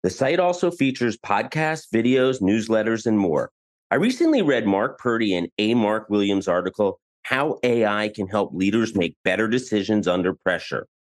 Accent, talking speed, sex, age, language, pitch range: American, 160 wpm, male, 40-59, English, 100-130 Hz